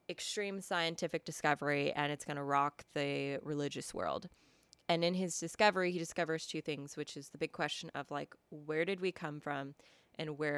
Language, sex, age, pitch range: English, female, 20-39, 145-170 Hz